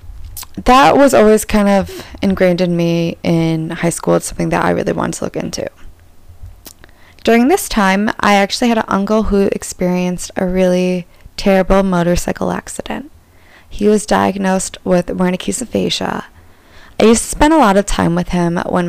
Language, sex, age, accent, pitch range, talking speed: English, female, 20-39, American, 175-215 Hz, 165 wpm